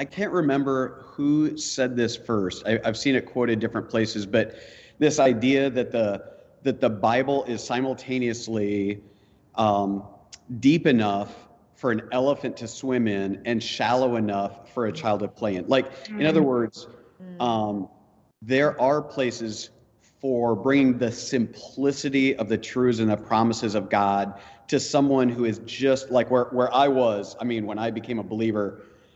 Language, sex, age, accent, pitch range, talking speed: English, male, 40-59, American, 110-135 Hz, 165 wpm